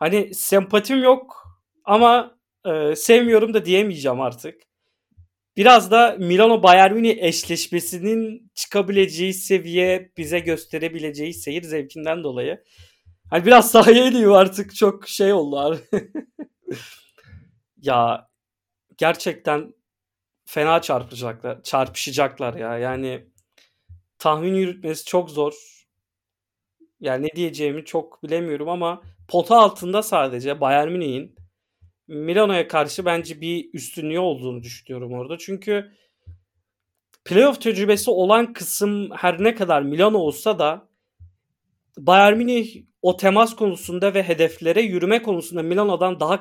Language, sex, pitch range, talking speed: Turkish, male, 140-205 Hz, 105 wpm